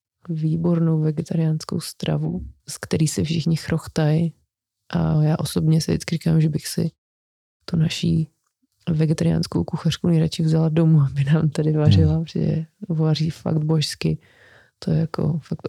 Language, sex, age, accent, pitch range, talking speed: Czech, female, 20-39, native, 160-180 Hz, 135 wpm